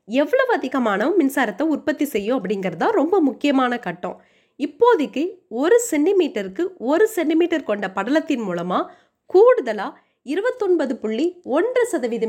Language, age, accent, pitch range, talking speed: Tamil, 20-39, native, 225-360 Hz, 100 wpm